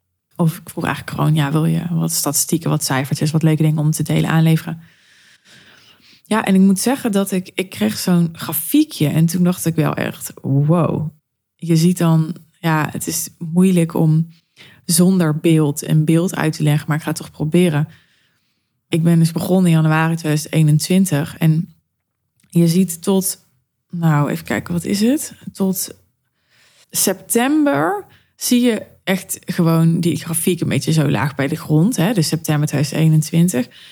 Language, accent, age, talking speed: Dutch, Dutch, 20-39, 165 wpm